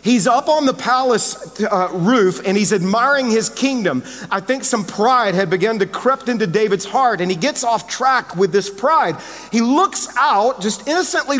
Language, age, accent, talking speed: English, 40-59, American, 190 wpm